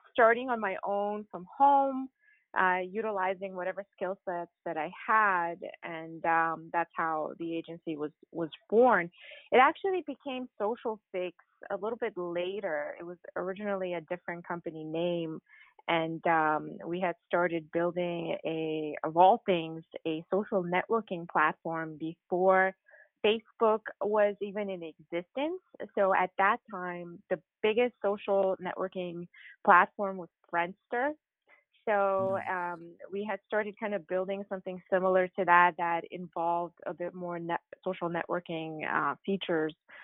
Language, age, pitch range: English, 20-39, 170-200 Hz